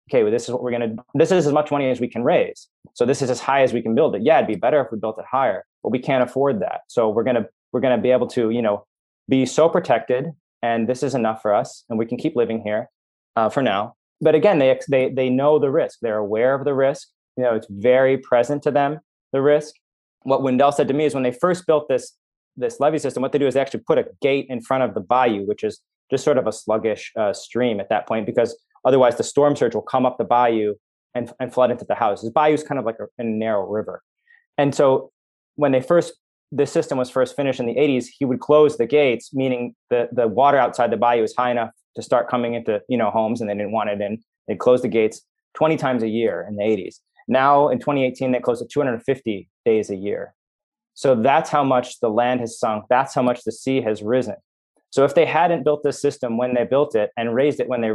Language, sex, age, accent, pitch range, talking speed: English, male, 30-49, American, 120-145 Hz, 260 wpm